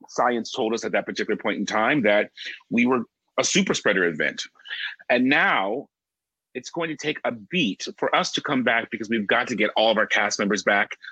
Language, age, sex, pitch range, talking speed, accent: English, 30-49, male, 110-145 Hz, 215 wpm, American